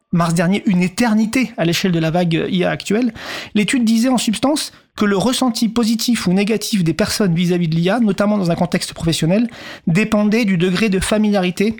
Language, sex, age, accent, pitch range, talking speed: French, male, 40-59, French, 180-220 Hz, 185 wpm